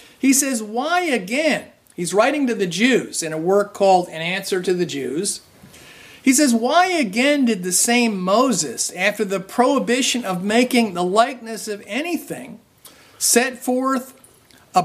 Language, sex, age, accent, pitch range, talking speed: English, male, 50-69, American, 180-250 Hz, 155 wpm